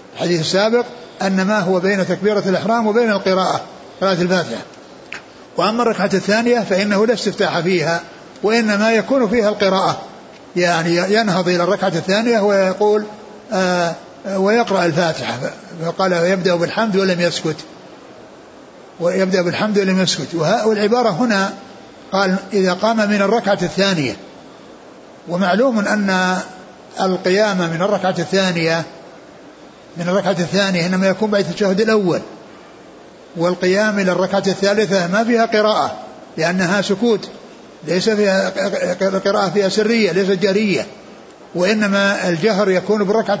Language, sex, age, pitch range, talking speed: Arabic, male, 60-79, 180-210 Hz, 115 wpm